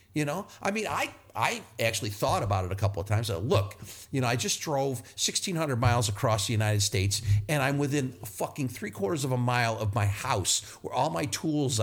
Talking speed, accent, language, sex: 215 wpm, American, English, male